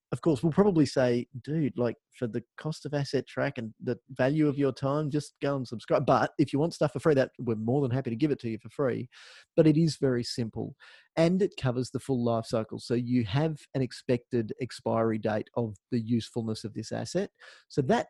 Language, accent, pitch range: English, Australian, 115-145 Hz